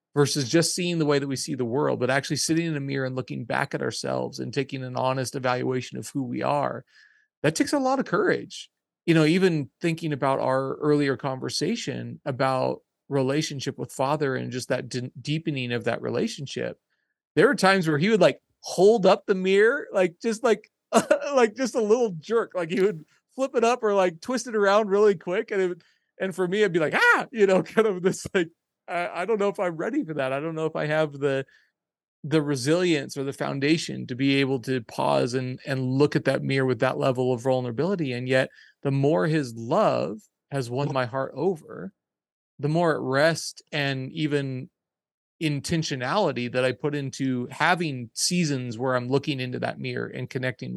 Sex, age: male, 30-49